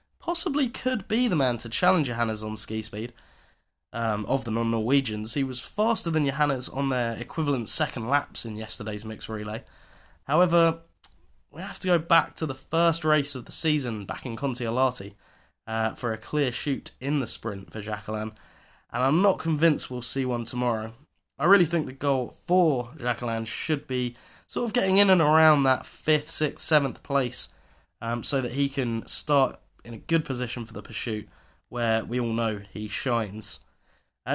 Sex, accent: male, British